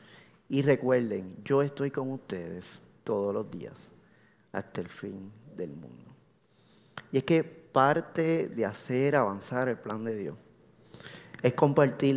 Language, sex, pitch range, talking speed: Spanish, male, 115-165 Hz, 135 wpm